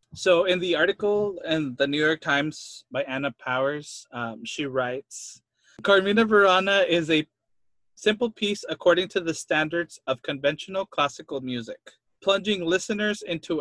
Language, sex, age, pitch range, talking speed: English, male, 20-39, 135-180 Hz, 140 wpm